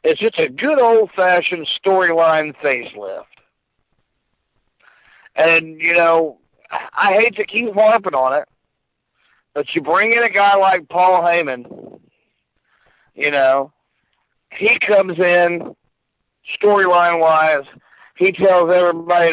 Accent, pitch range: American, 145-185 Hz